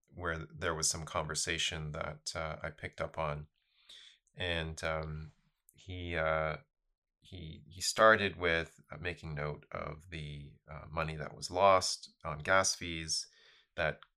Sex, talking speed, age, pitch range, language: male, 135 wpm, 30-49, 75-90 Hz, English